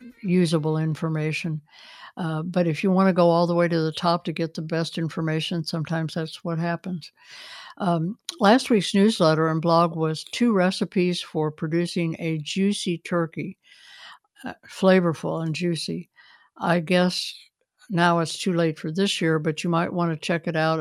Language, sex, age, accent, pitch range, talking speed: English, female, 60-79, American, 160-180 Hz, 170 wpm